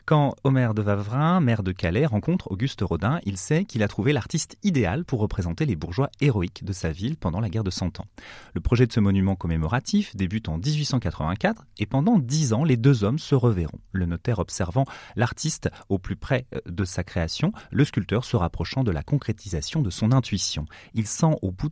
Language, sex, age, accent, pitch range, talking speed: French, male, 30-49, French, 95-135 Hz, 200 wpm